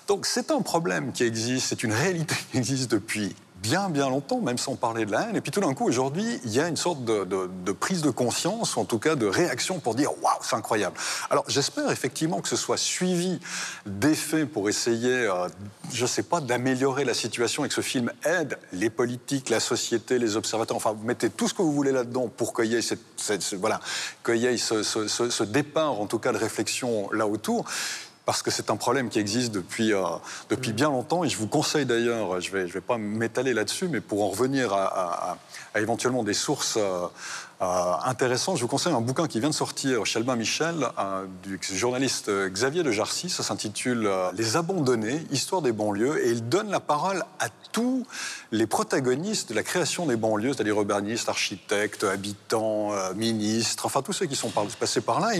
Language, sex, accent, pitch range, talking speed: French, male, French, 110-150 Hz, 215 wpm